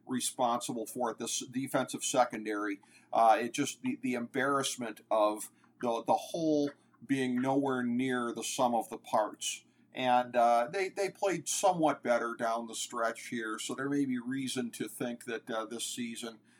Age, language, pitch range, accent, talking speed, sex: 40-59, English, 115-130 Hz, American, 165 wpm, male